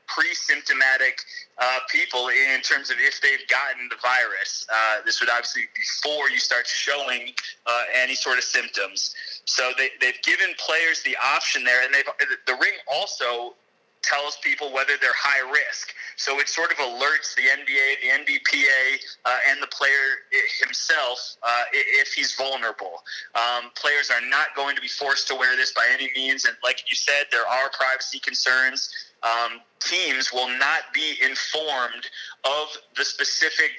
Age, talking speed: 30-49, 165 wpm